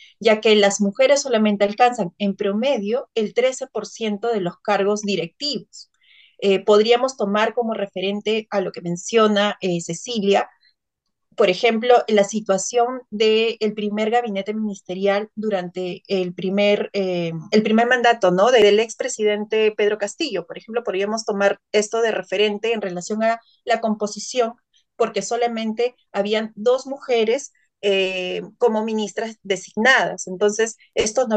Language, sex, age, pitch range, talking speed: Spanish, female, 30-49, 200-230 Hz, 135 wpm